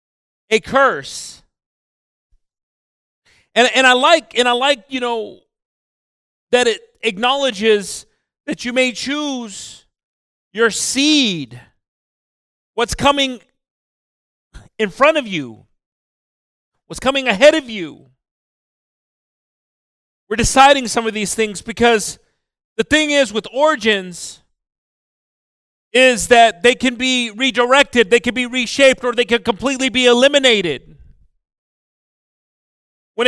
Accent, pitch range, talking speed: American, 220-270 Hz, 110 wpm